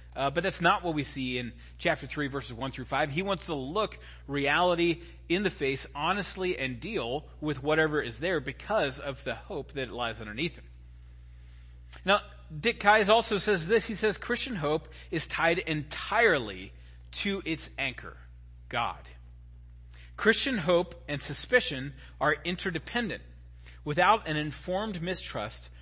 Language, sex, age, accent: English, male, 30-49, American